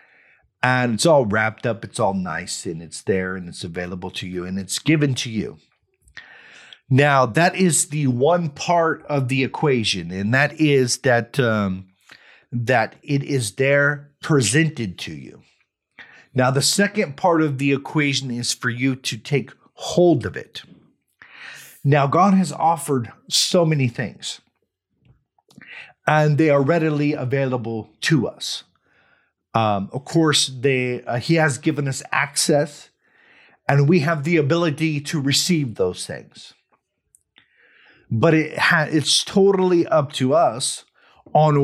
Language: English